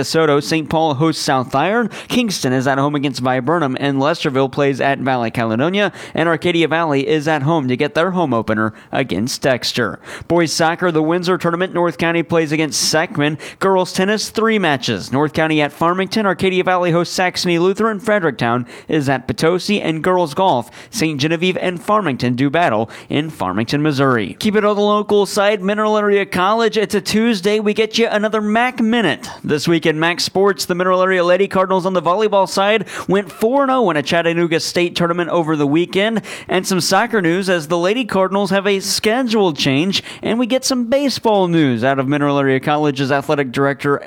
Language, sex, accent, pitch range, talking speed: English, male, American, 150-195 Hz, 185 wpm